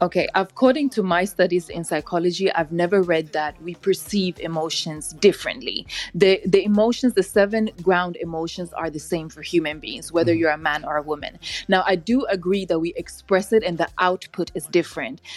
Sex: female